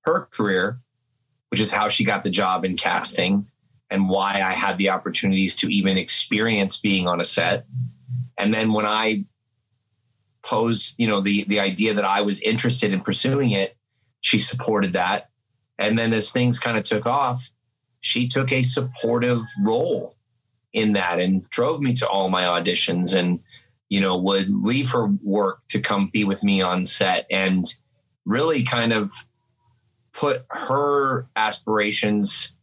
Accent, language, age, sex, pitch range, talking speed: American, English, 30-49, male, 100-120 Hz, 160 wpm